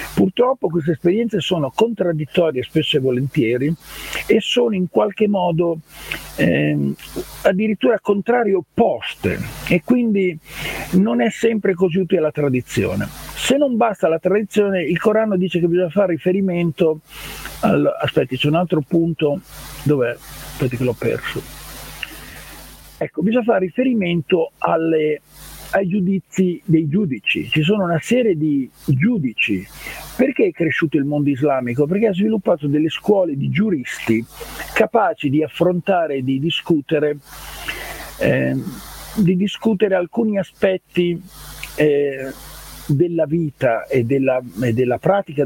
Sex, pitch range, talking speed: male, 150-195 Hz, 125 wpm